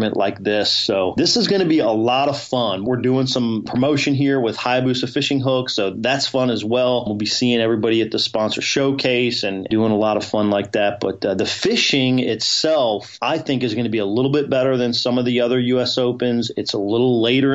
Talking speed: 235 wpm